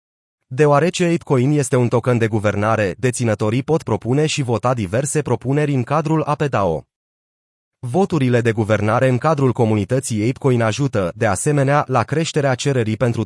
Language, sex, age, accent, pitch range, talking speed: Romanian, male, 30-49, native, 115-150 Hz, 140 wpm